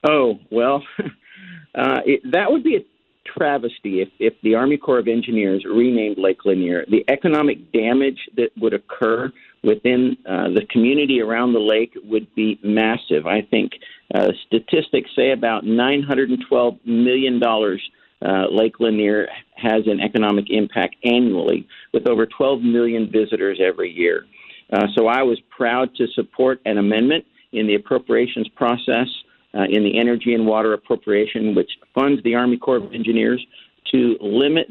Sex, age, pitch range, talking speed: male, 50-69, 110-135 Hz, 150 wpm